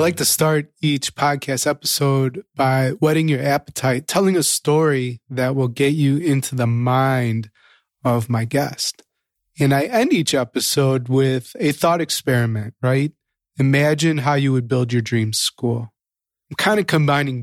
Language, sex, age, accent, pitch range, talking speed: English, male, 20-39, American, 130-155 Hz, 160 wpm